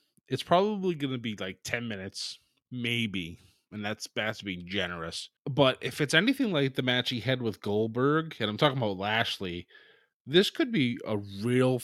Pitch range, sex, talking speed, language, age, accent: 110-145 Hz, male, 180 wpm, English, 20-39, American